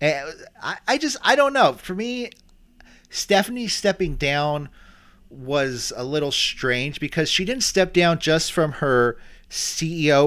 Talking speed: 135 wpm